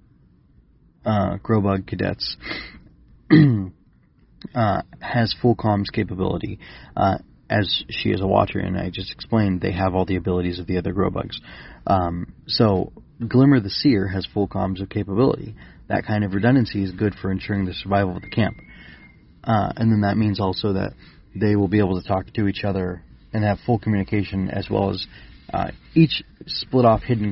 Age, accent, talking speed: 30-49, American, 175 wpm